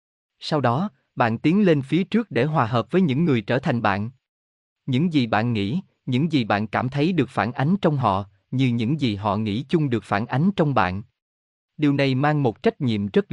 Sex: male